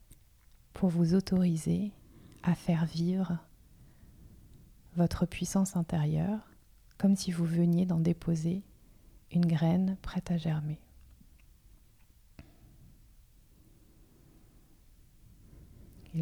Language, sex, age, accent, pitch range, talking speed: French, female, 30-49, French, 160-180 Hz, 80 wpm